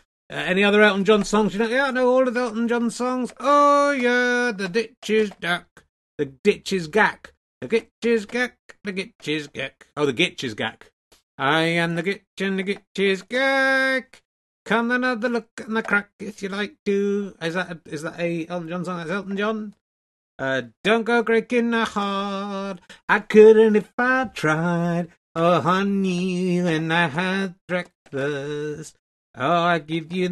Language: English